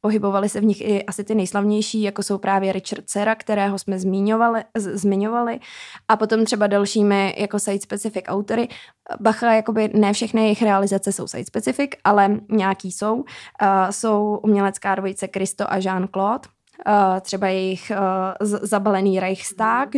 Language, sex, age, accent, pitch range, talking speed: Czech, female, 20-39, native, 195-215 Hz, 145 wpm